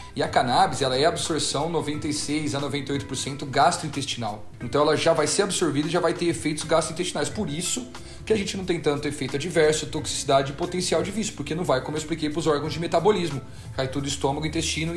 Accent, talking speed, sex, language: Brazilian, 210 wpm, male, Portuguese